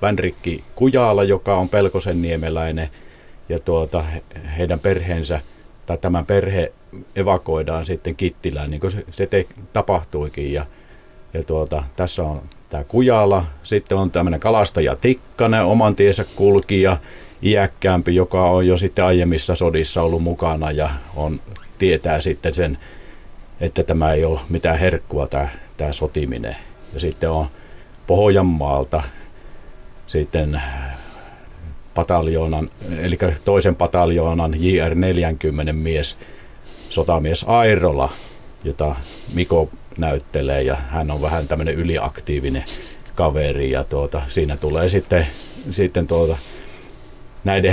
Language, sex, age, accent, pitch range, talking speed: Finnish, male, 50-69, native, 75-95 Hz, 110 wpm